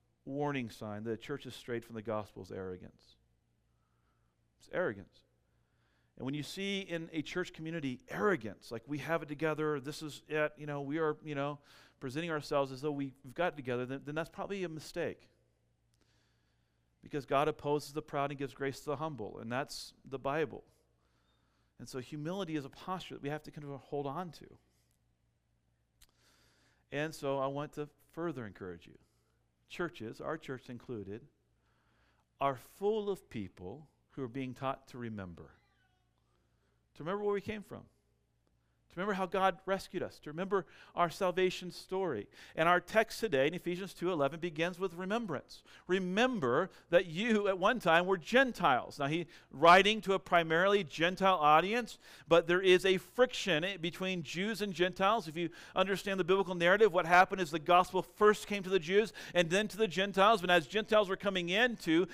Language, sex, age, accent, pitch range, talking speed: English, male, 40-59, American, 135-185 Hz, 175 wpm